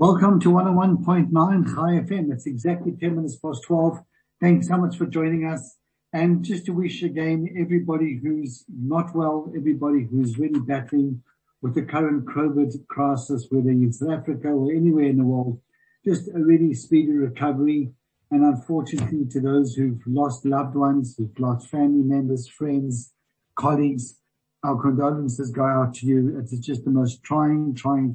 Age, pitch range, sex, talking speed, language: 60-79, 130-155 Hz, male, 160 wpm, English